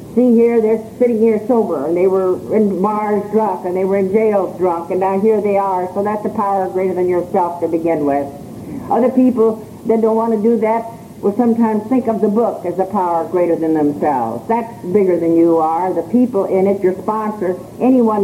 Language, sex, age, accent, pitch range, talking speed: English, female, 60-79, American, 180-220 Hz, 215 wpm